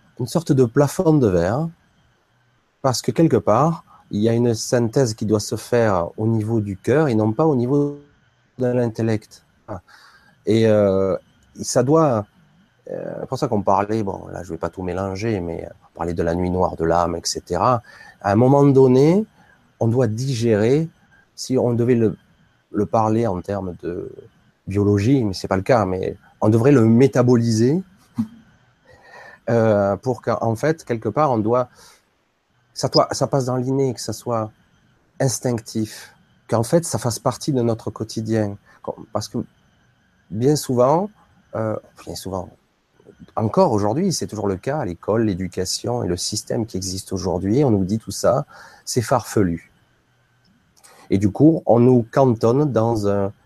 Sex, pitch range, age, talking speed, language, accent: male, 100-130 Hz, 30-49, 165 wpm, French, French